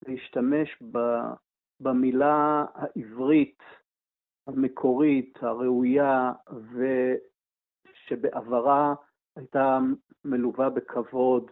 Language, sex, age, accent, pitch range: Hebrew, male, 50-69, native, 125-150 Hz